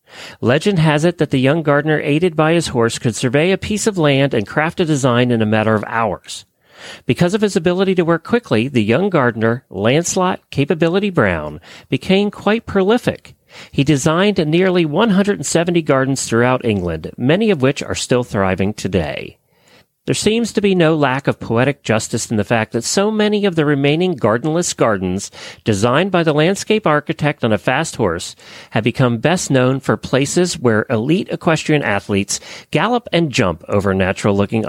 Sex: male